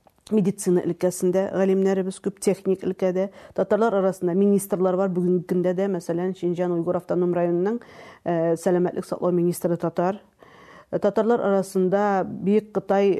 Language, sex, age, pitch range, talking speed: Russian, female, 40-59, 180-220 Hz, 110 wpm